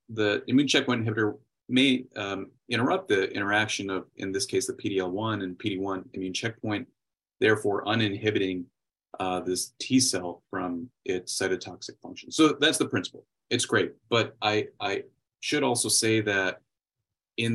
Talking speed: 150 wpm